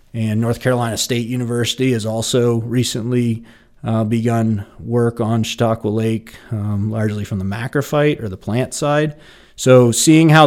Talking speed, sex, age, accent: 150 wpm, male, 30-49, American